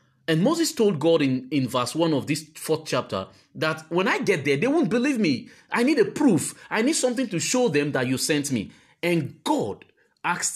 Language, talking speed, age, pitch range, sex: English, 215 wpm, 30-49, 145-215 Hz, male